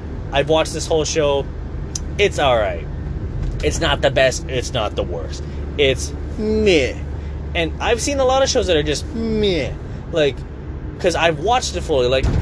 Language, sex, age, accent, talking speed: English, male, 20-39, American, 170 wpm